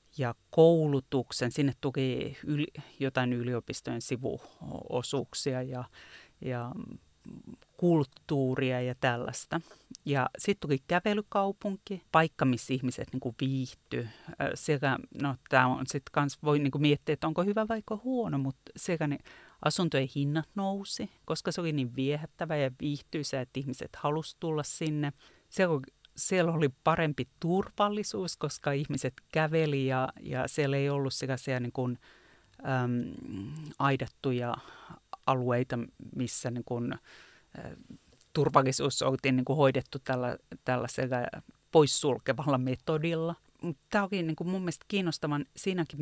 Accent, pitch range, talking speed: native, 130-165 Hz, 110 wpm